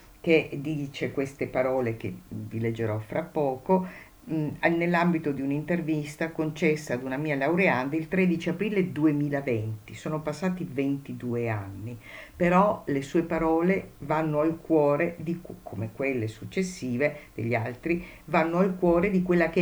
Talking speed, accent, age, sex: 135 wpm, native, 50-69, female